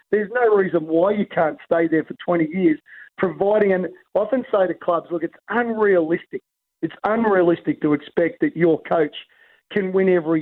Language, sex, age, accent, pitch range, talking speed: English, male, 40-59, Australian, 165-200 Hz, 180 wpm